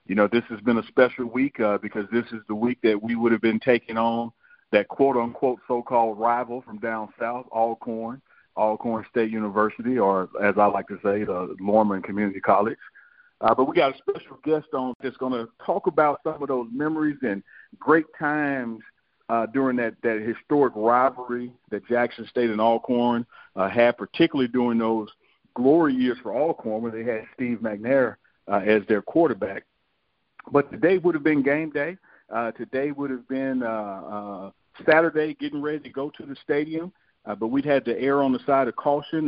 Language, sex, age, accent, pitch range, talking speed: English, male, 50-69, American, 115-140 Hz, 190 wpm